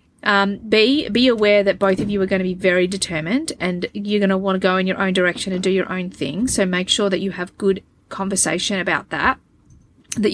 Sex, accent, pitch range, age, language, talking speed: female, Australian, 180-220 Hz, 30-49, English, 240 wpm